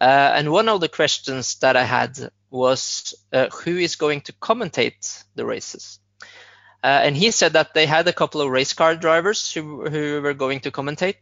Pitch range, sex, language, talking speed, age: 140-180 Hz, male, English, 200 wpm, 20-39